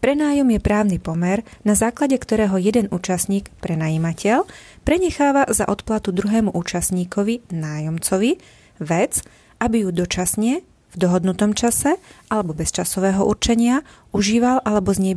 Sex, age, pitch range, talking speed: female, 30-49, 180-215 Hz, 125 wpm